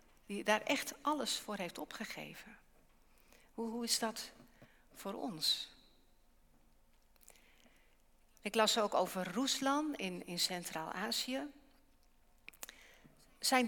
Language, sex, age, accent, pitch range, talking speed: English, female, 60-79, Dutch, 195-260 Hz, 95 wpm